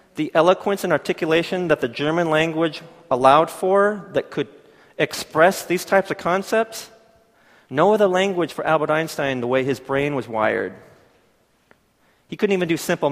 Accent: American